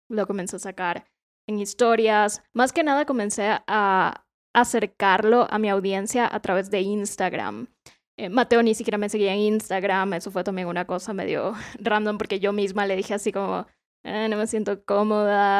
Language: Spanish